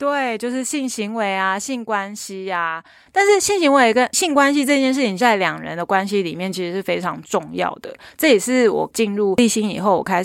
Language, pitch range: Chinese, 185-240 Hz